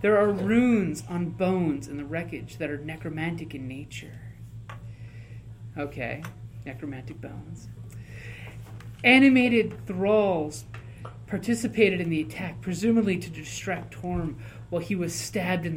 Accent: American